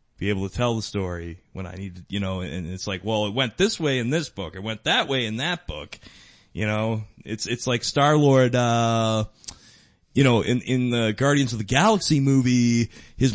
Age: 20-39